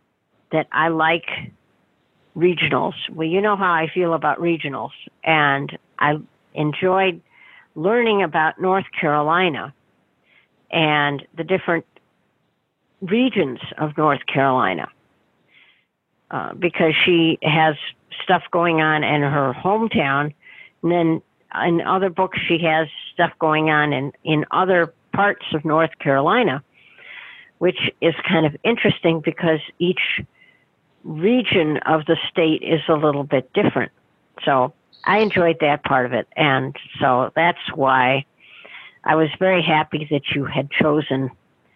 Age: 50-69